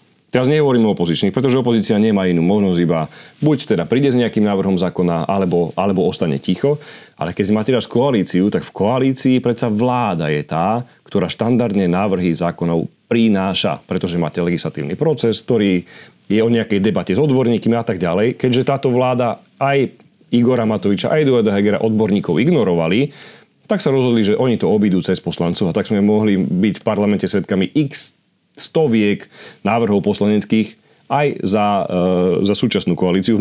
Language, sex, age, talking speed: Slovak, male, 30-49, 165 wpm